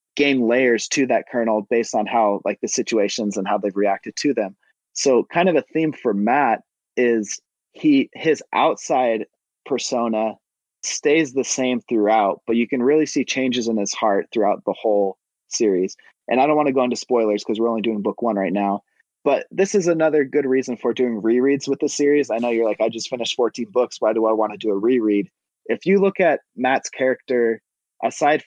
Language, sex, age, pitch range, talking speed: English, male, 30-49, 110-145 Hz, 205 wpm